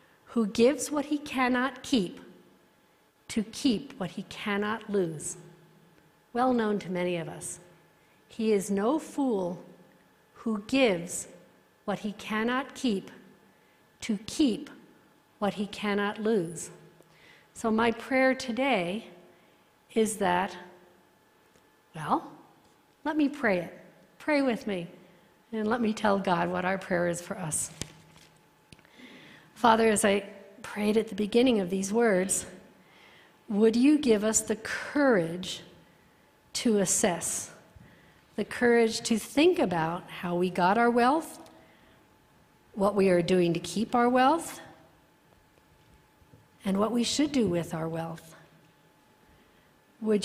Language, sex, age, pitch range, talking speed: English, female, 60-79, 180-235 Hz, 125 wpm